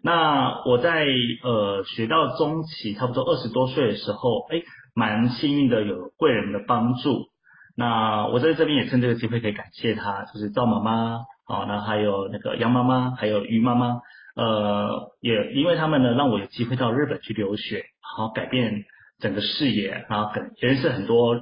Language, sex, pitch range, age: Chinese, male, 105-125 Hz, 30-49